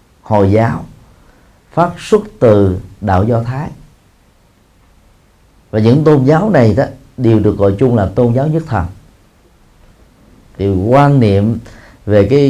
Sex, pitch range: male, 95-135 Hz